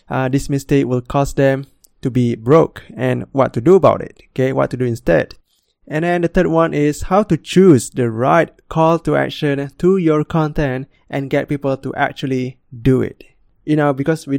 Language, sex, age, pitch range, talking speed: English, male, 20-39, 130-160 Hz, 200 wpm